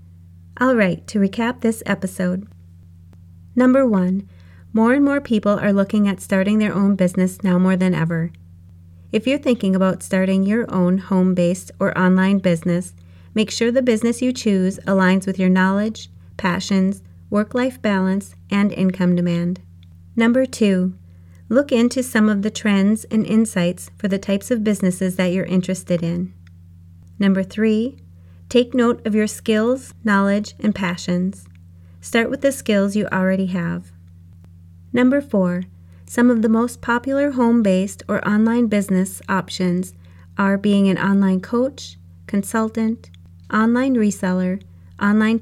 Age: 30-49